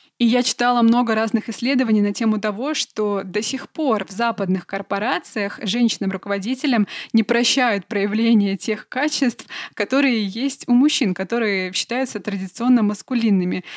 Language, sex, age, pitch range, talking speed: Russian, female, 20-39, 205-250 Hz, 130 wpm